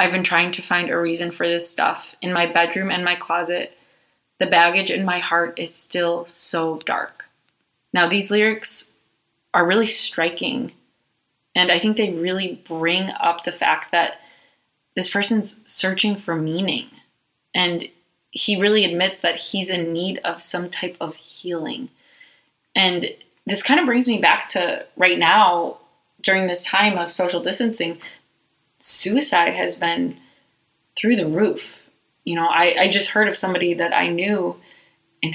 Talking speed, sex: 160 wpm, female